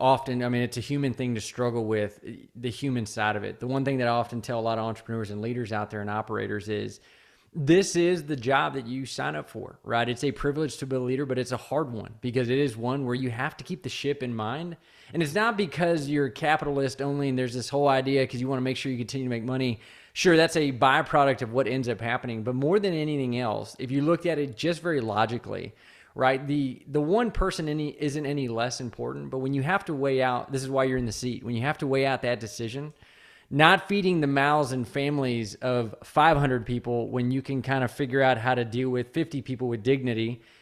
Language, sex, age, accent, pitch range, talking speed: English, male, 20-39, American, 120-145 Hz, 250 wpm